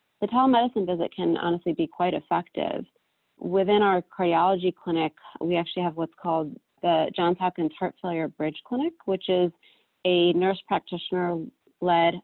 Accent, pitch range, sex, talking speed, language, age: American, 160-190 Hz, female, 140 wpm, English, 30-49